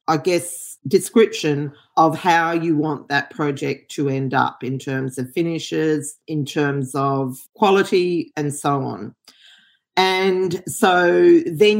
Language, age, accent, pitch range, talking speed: English, 40-59, Australian, 150-185 Hz, 130 wpm